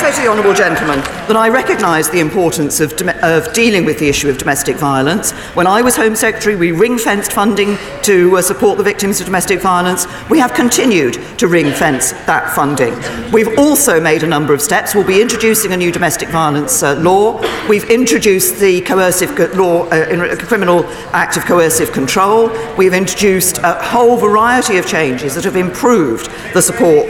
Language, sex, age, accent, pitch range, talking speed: English, female, 50-69, British, 165-220 Hz, 185 wpm